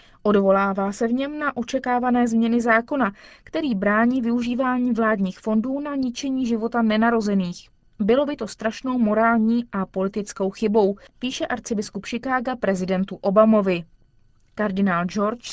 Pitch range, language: 195-245 Hz, Czech